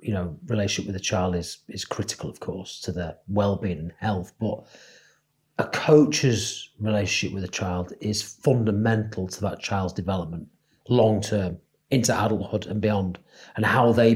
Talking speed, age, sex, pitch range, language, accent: 160 wpm, 40-59, male, 95-115 Hz, English, British